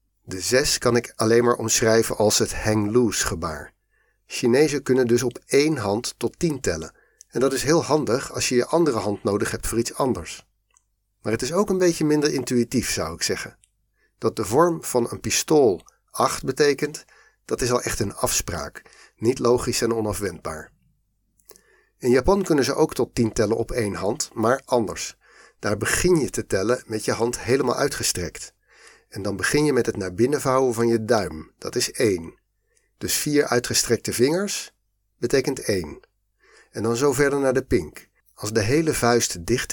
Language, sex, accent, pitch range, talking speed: Dutch, male, Dutch, 110-135 Hz, 185 wpm